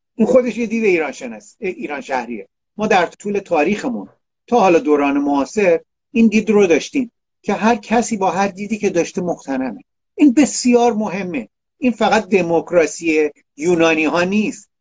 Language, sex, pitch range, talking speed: Persian, male, 150-210 Hz, 150 wpm